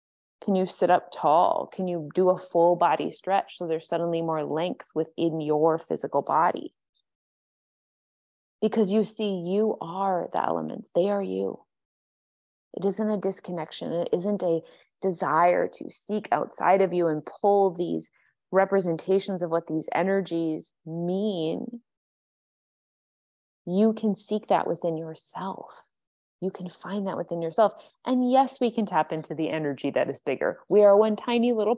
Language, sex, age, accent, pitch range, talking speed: English, female, 20-39, American, 160-195 Hz, 155 wpm